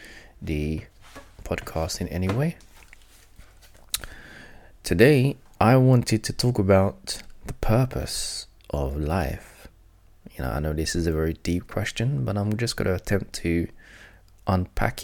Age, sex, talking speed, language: 20-39, male, 130 wpm, English